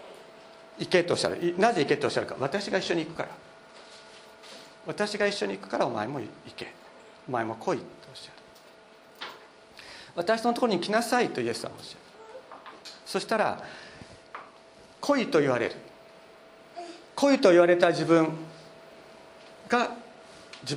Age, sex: 50-69, male